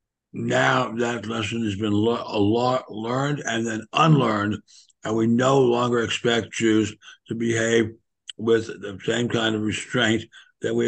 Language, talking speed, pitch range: English, 150 wpm, 105-130 Hz